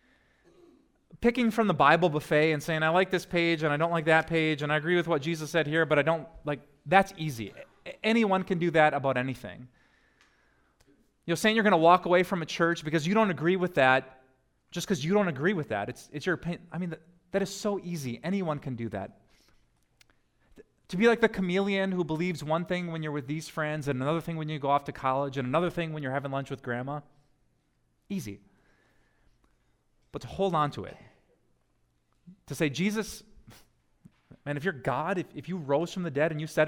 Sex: male